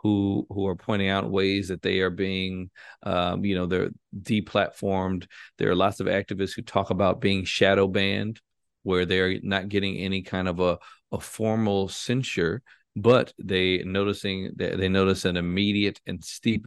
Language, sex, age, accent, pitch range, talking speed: English, male, 40-59, American, 90-100 Hz, 165 wpm